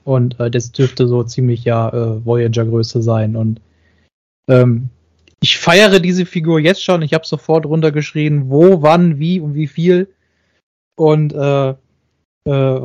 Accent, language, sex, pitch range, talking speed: German, English, male, 130-160 Hz, 150 wpm